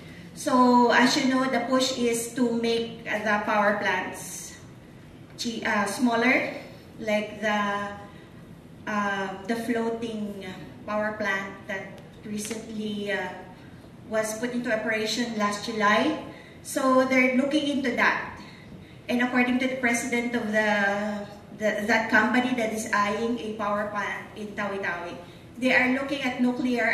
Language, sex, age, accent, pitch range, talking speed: English, female, 20-39, Filipino, 205-245 Hz, 125 wpm